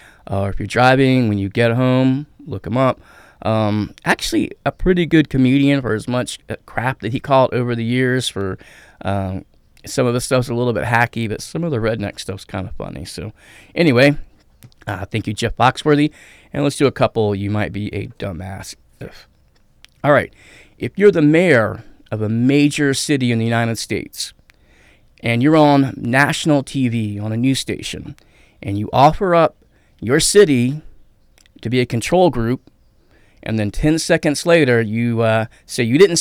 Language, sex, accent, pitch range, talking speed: English, male, American, 105-140 Hz, 180 wpm